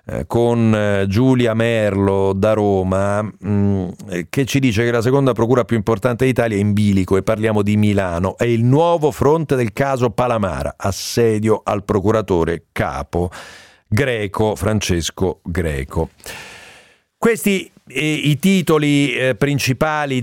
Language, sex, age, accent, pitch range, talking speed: Italian, male, 40-59, native, 95-130 Hz, 120 wpm